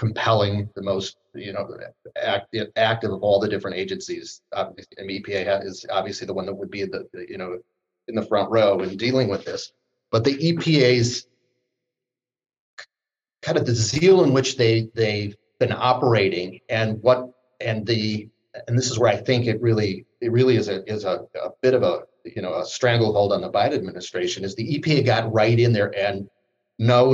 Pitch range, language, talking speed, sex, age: 105-125 Hz, English, 190 wpm, male, 30-49